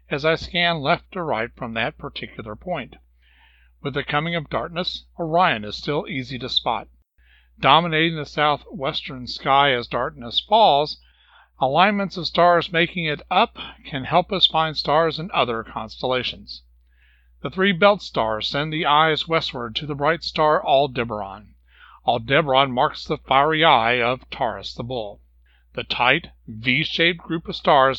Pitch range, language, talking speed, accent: 115-170 Hz, English, 150 wpm, American